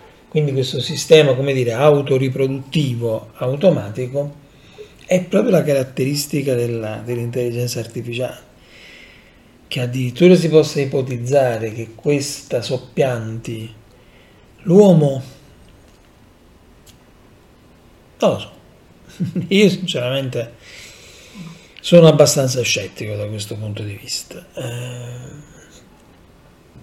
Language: Italian